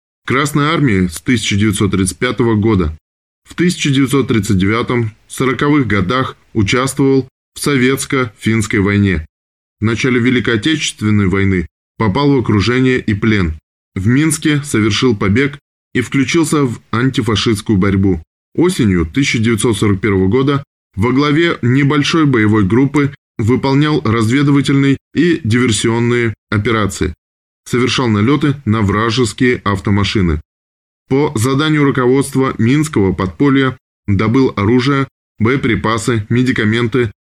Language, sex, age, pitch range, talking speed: Russian, male, 20-39, 100-135 Hz, 95 wpm